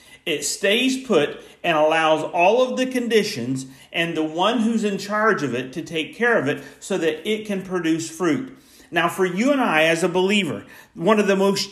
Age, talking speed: 50-69, 205 wpm